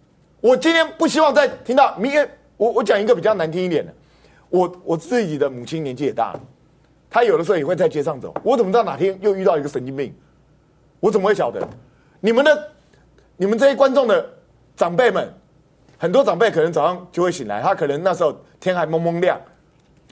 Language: Chinese